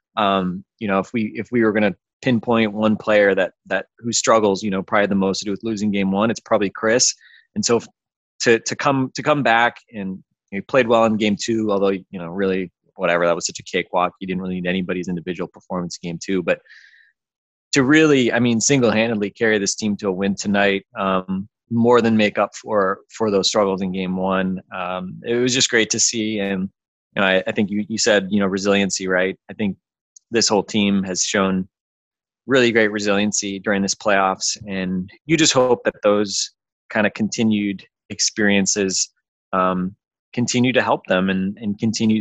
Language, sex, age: English, male, 20-39